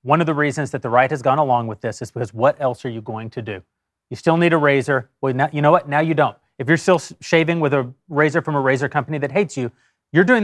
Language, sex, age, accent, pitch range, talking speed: English, male, 30-49, American, 130-170 Hz, 280 wpm